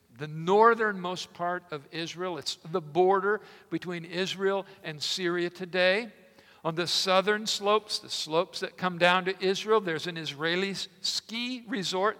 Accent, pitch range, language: American, 160-200 Hz, English